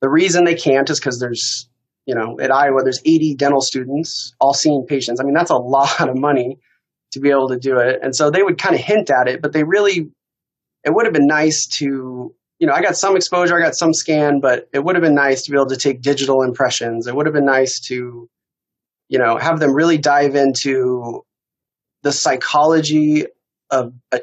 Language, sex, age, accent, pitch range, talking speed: English, male, 20-39, American, 130-155 Hz, 220 wpm